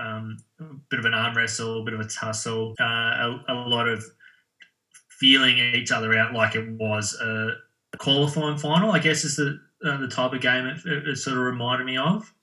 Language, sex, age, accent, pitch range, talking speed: English, male, 20-39, Australian, 110-130 Hz, 210 wpm